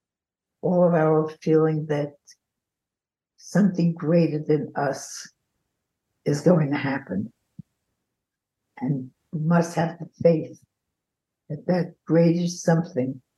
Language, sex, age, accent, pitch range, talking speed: English, female, 60-79, American, 140-175 Hz, 105 wpm